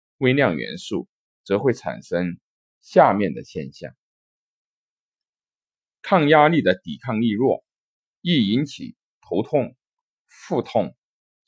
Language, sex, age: Chinese, male, 50-69